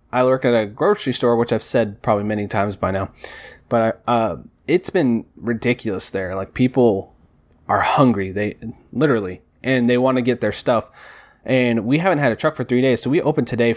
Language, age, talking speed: English, 20-39, 200 wpm